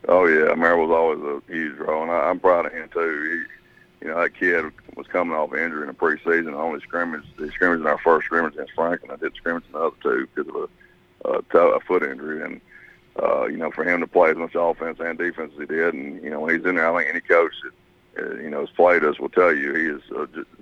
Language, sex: English, male